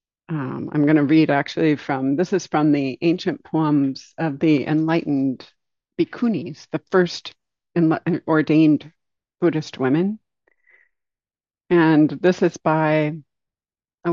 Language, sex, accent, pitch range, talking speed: English, female, American, 145-180 Hz, 120 wpm